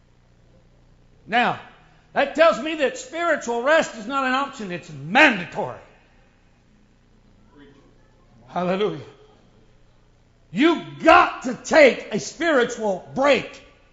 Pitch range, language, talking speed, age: 180-265 Hz, English, 90 wpm, 60-79